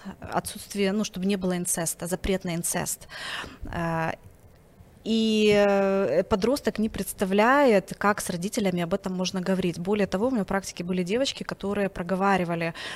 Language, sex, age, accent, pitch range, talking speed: Ukrainian, female, 20-39, native, 185-215 Hz, 130 wpm